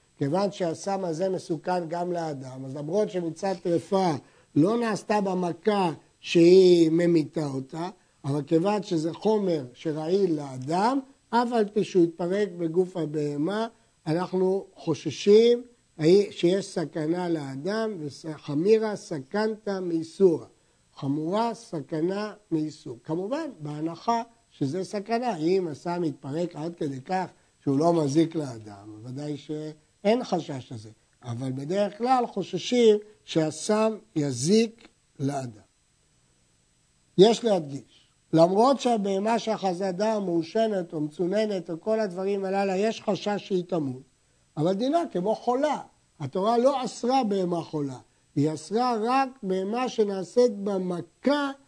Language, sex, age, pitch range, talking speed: Hebrew, male, 60-79, 155-210 Hz, 115 wpm